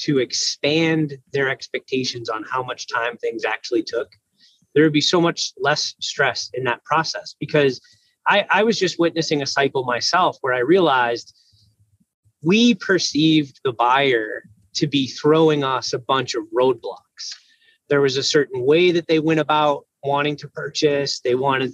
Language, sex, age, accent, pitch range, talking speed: English, male, 30-49, American, 140-180 Hz, 165 wpm